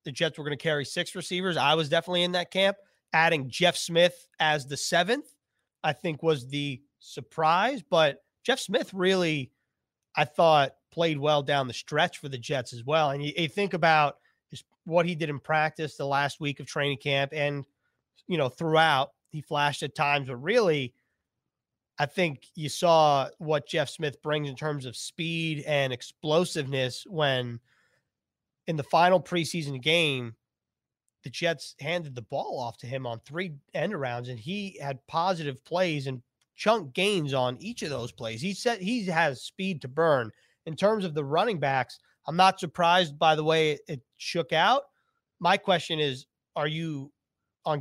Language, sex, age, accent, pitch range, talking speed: English, male, 30-49, American, 140-175 Hz, 175 wpm